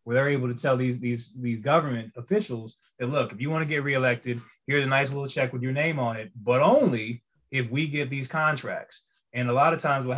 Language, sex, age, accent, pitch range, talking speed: English, male, 20-39, American, 125-155 Hz, 240 wpm